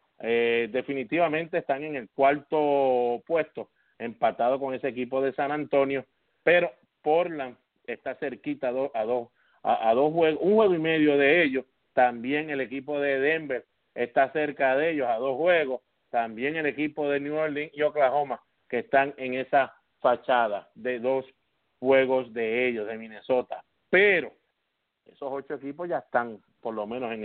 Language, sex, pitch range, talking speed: English, male, 125-150 Hz, 165 wpm